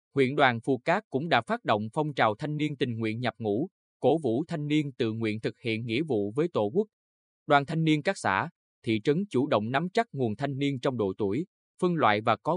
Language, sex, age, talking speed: Vietnamese, male, 20-39, 240 wpm